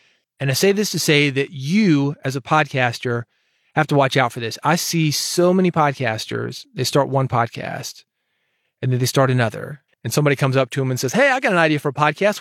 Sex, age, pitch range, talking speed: male, 30-49, 125-155 Hz, 225 wpm